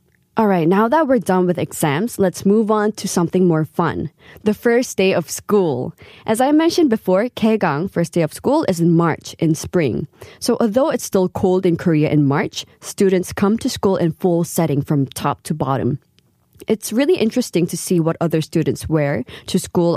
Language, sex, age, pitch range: Korean, female, 20-39, 170-220 Hz